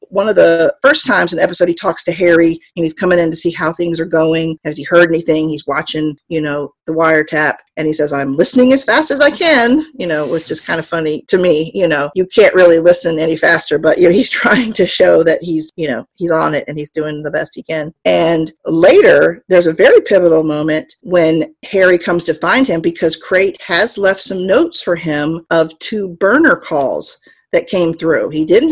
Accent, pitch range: American, 160-195 Hz